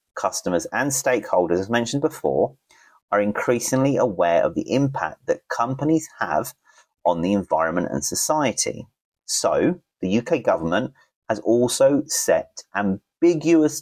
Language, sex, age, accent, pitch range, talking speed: English, male, 30-49, British, 95-140 Hz, 120 wpm